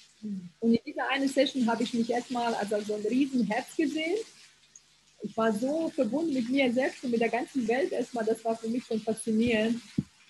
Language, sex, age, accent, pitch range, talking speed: German, female, 20-39, German, 210-250 Hz, 200 wpm